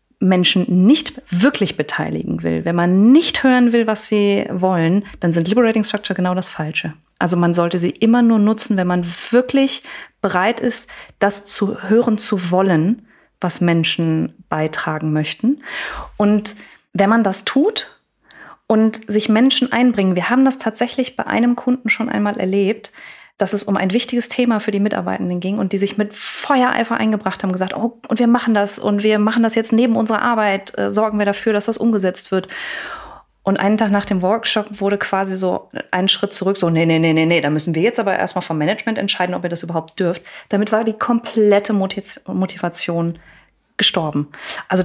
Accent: German